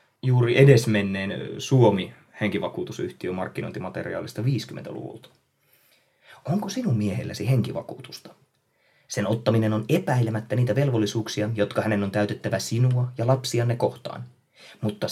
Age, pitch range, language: 20-39, 105-130 Hz, Finnish